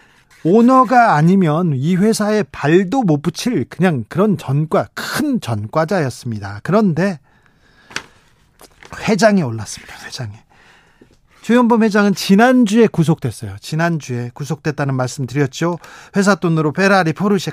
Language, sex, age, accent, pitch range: Korean, male, 40-59, native, 145-200 Hz